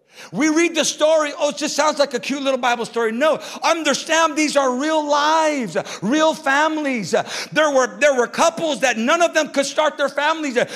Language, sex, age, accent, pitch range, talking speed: English, male, 50-69, American, 270-320 Hz, 195 wpm